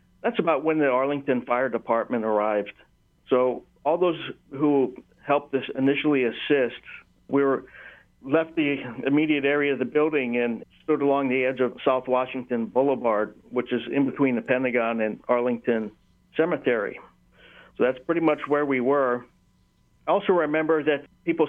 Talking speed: 150 wpm